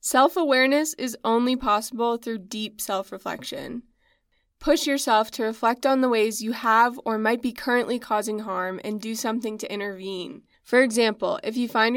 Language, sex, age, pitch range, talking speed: English, female, 20-39, 210-245 Hz, 160 wpm